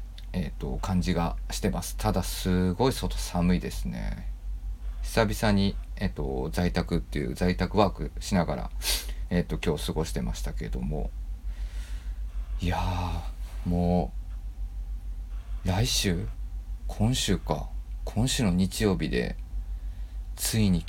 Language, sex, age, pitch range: Japanese, male, 40-59, 85-100 Hz